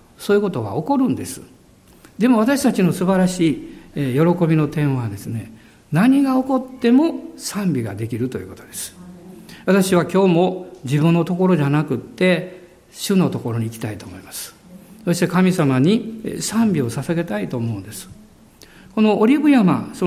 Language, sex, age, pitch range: Japanese, male, 50-69, 130-205 Hz